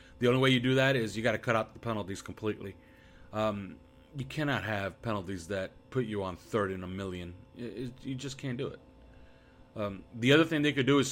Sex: male